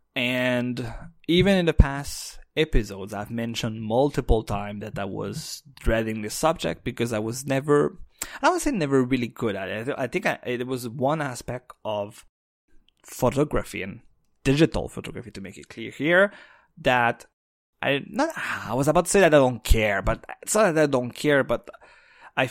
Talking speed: 175 wpm